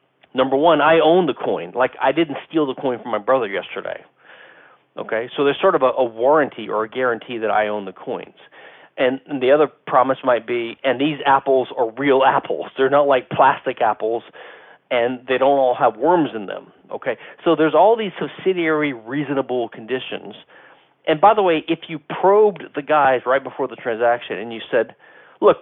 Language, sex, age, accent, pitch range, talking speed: English, male, 40-59, American, 125-175 Hz, 195 wpm